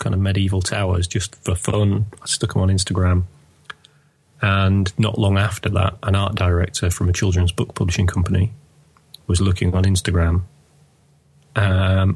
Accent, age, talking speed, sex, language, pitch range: British, 30-49, 155 wpm, male, English, 95-115 Hz